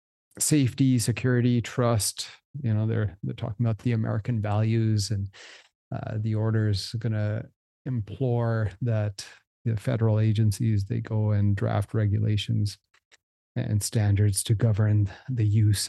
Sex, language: male, English